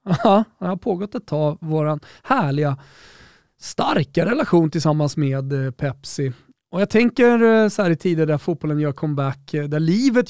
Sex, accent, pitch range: male, native, 140-180 Hz